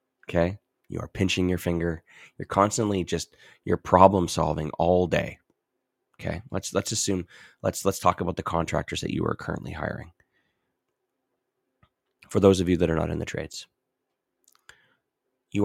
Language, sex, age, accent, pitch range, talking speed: English, male, 20-39, American, 80-95 Hz, 155 wpm